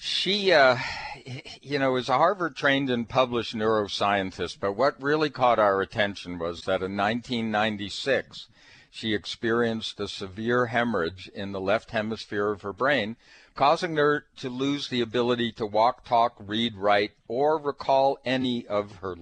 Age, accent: 60-79, American